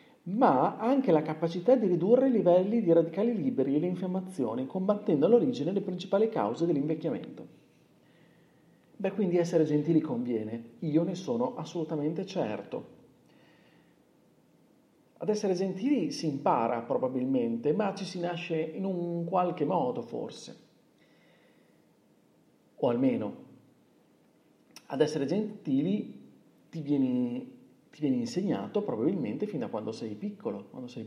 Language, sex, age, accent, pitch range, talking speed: Italian, male, 40-59, native, 140-215 Hz, 120 wpm